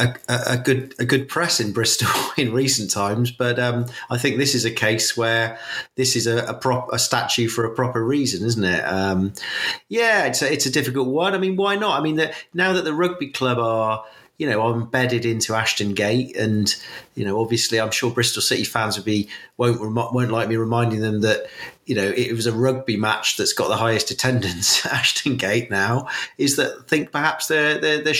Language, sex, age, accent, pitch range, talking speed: English, male, 40-59, British, 105-130 Hz, 220 wpm